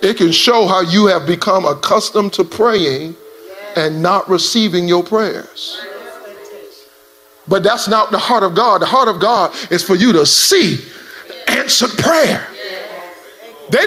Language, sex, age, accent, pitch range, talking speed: English, male, 40-59, American, 150-220 Hz, 145 wpm